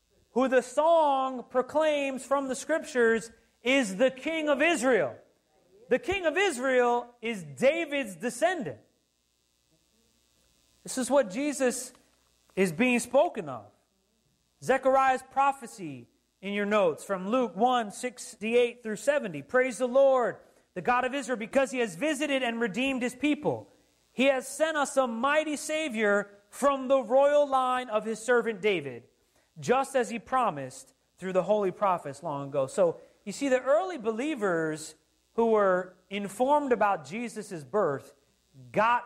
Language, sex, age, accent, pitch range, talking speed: English, male, 30-49, American, 210-275 Hz, 140 wpm